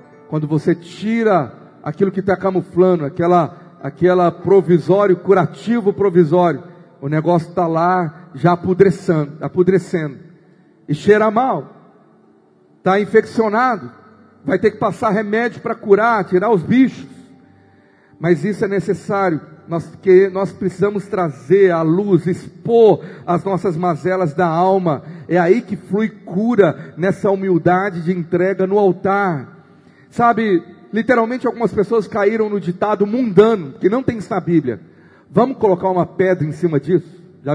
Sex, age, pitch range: male, 50-69, 175-220 Hz